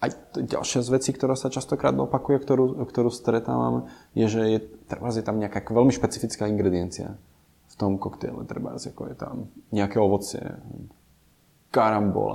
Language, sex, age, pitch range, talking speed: Czech, male, 20-39, 95-110 Hz, 135 wpm